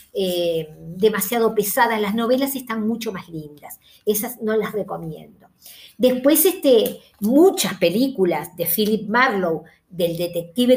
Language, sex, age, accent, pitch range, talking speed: Spanish, female, 50-69, Argentinian, 195-260 Hz, 115 wpm